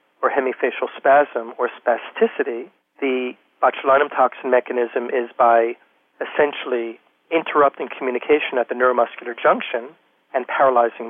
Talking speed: 110 wpm